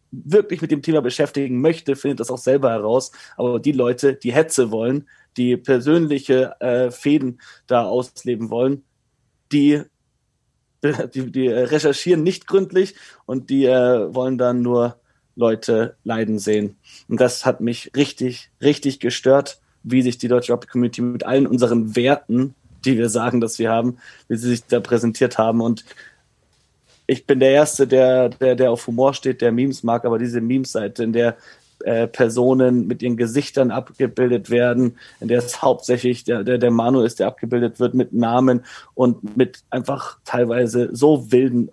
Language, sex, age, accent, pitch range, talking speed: German, male, 30-49, German, 120-130 Hz, 165 wpm